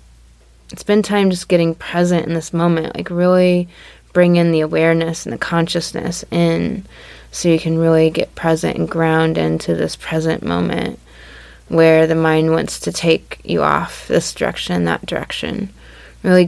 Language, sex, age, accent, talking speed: English, female, 20-39, American, 155 wpm